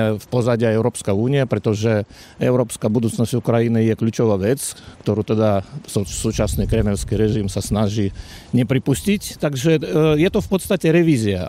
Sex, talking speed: male, 130 wpm